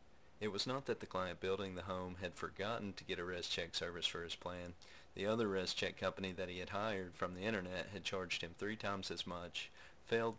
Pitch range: 90-100 Hz